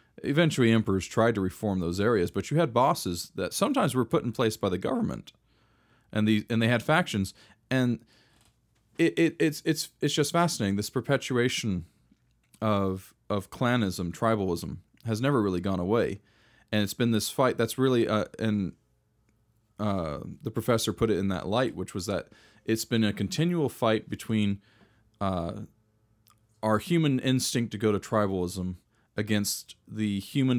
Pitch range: 95-115 Hz